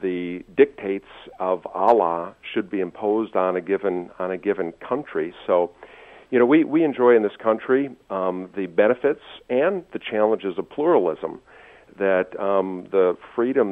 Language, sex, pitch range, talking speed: English, male, 95-110 Hz, 155 wpm